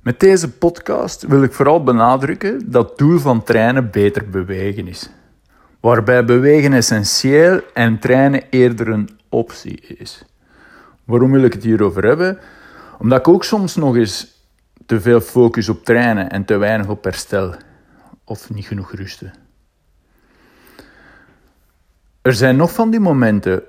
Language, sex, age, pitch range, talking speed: Dutch, male, 50-69, 105-140 Hz, 140 wpm